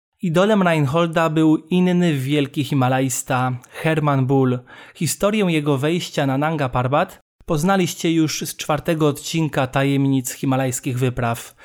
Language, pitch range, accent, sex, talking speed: Polish, 140-165 Hz, native, male, 115 wpm